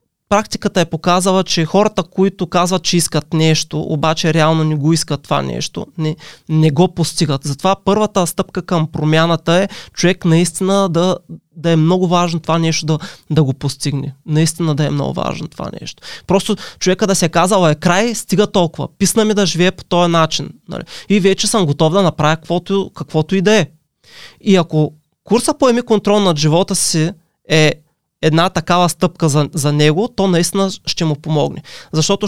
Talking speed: 175 wpm